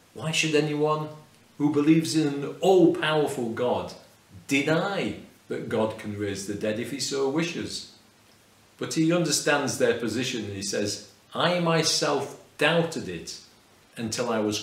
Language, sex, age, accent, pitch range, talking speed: English, male, 40-59, British, 105-145 Hz, 145 wpm